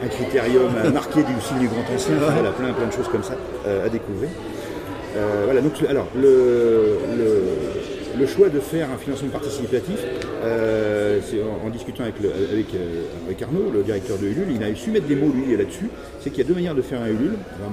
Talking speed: 220 wpm